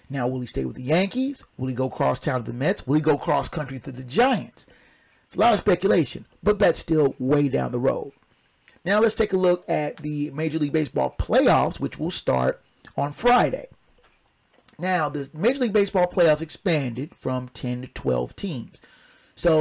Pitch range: 135-180 Hz